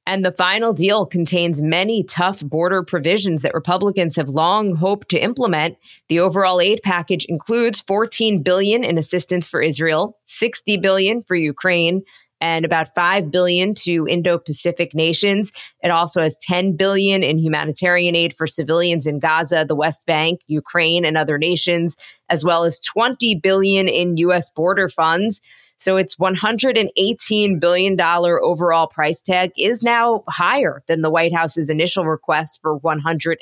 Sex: female